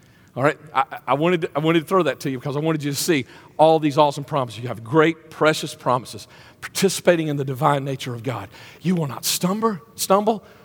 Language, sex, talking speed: English, male, 205 wpm